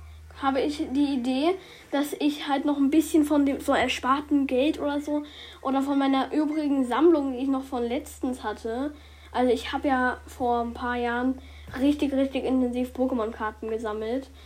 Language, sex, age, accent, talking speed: German, female, 10-29, German, 170 wpm